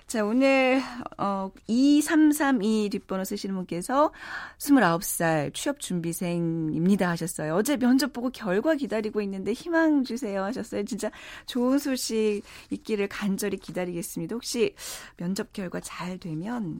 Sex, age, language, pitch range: female, 40-59, Korean, 170-250 Hz